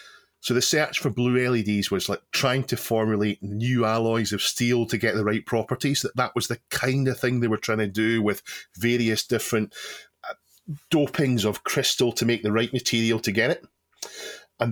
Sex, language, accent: male, English, British